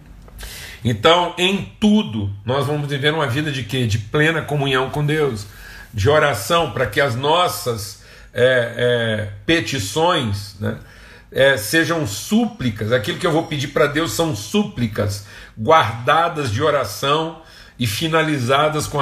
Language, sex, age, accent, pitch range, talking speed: Portuguese, male, 50-69, Brazilian, 110-150 Hz, 125 wpm